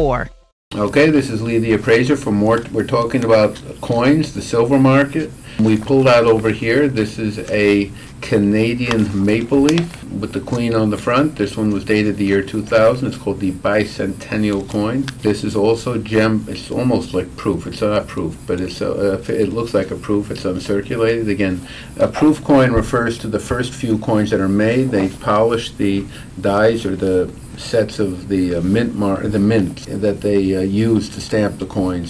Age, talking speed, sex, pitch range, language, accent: 50-69, 190 wpm, male, 95-115 Hz, English, American